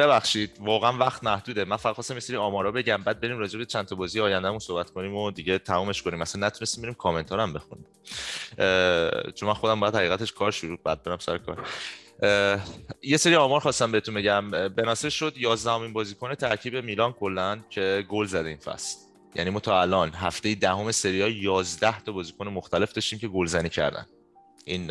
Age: 30-49